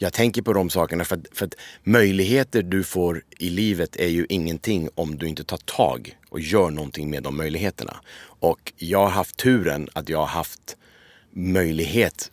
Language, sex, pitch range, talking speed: English, male, 80-95 Hz, 180 wpm